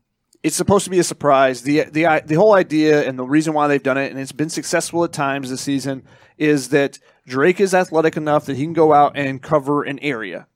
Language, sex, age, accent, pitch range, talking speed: English, male, 30-49, American, 135-160 Hz, 235 wpm